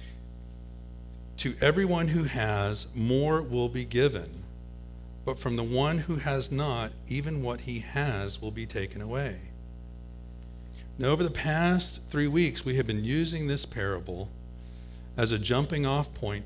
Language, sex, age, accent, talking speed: English, male, 50-69, American, 145 wpm